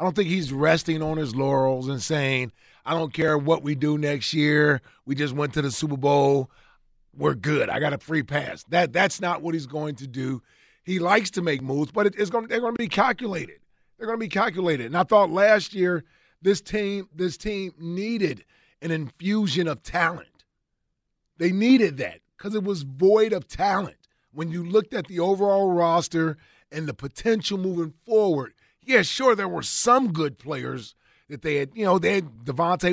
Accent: American